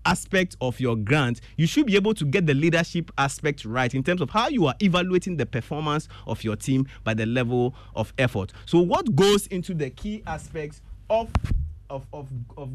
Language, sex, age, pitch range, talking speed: English, male, 30-49, 125-160 Hz, 190 wpm